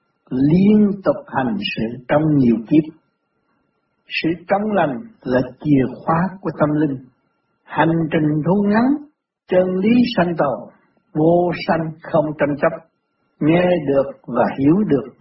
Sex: male